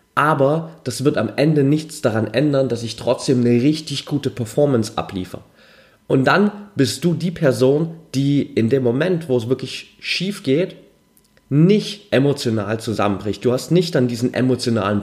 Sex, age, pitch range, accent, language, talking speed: male, 30-49, 115-145 Hz, German, German, 160 wpm